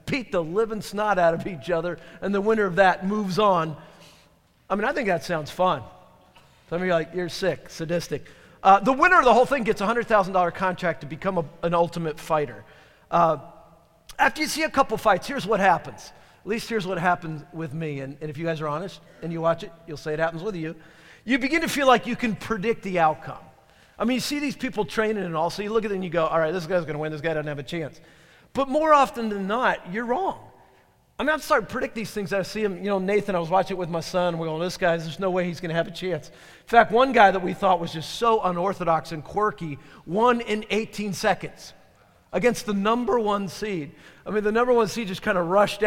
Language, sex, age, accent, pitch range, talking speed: English, male, 40-59, American, 165-220 Hz, 250 wpm